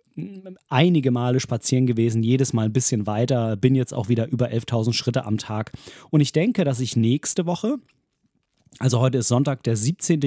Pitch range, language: 120-155 Hz, German